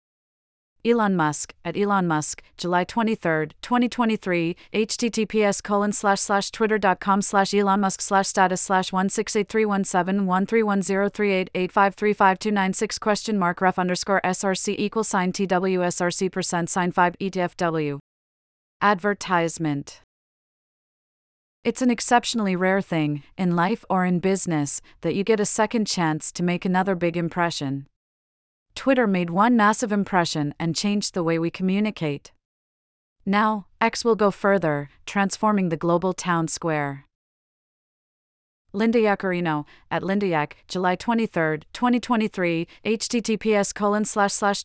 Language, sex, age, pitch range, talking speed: English, female, 40-59, 175-210 Hz, 110 wpm